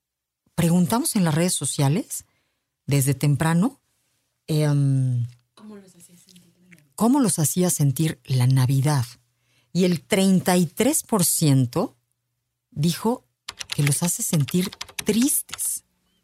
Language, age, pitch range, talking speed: Spanish, 40-59, 125-165 Hz, 85 wpm